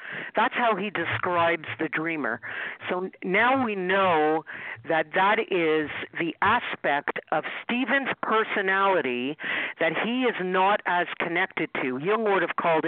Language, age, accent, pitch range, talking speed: English, 50-69, American, 170-220 Hz, 135 wpm